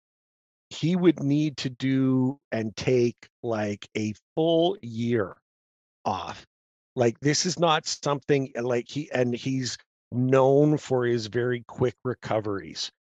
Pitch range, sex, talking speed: 110-135 Hz, male, 125 wpm